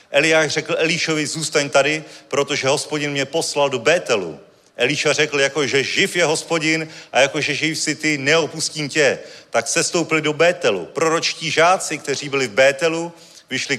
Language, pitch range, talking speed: Czech, 140-165 Hz, 150 wpm